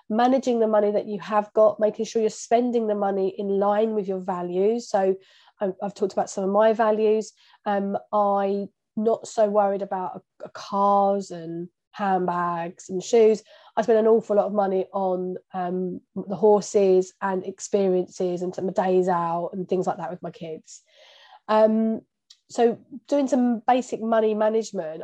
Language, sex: English, female